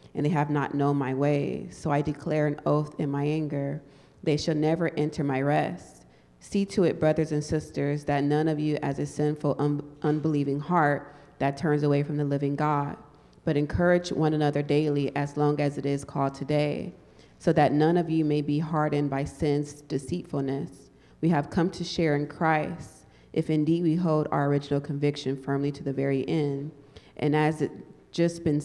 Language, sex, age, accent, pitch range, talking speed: English, female, 30-49, American, 145-155 Hz, 190 wpm